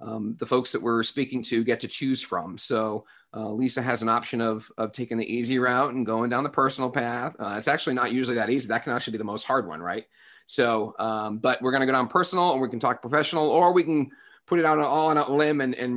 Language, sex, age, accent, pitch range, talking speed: English, male, 30-49, American, 110-140 Hz, 270 wpm